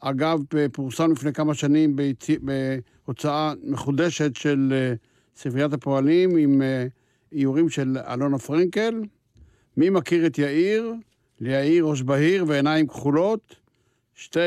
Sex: male